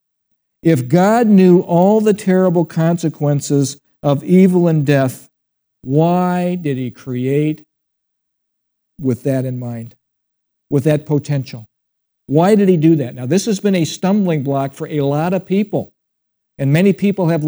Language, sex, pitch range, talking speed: English, male, 140-180 Hz, 150 wpm